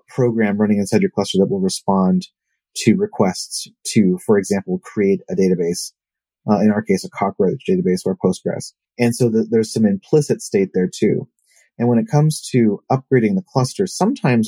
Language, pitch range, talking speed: English, 105-180 Hz, 180 wpm